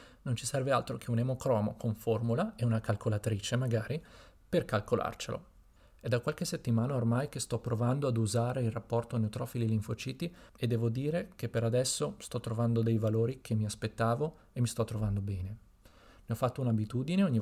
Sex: male